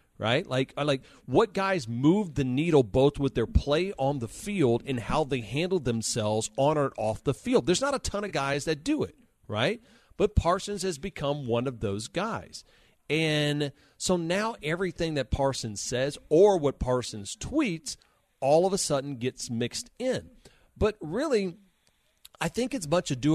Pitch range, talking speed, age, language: 115-175 Hz, 175 wpm, 40-59, English